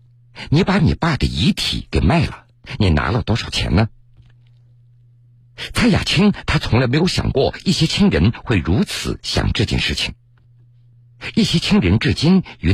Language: Chinese